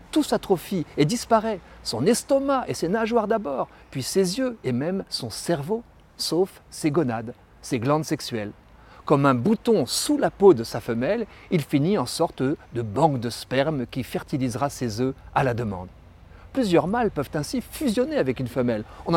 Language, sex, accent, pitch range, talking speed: French, male, French, 120-175 Hz, 175 wpm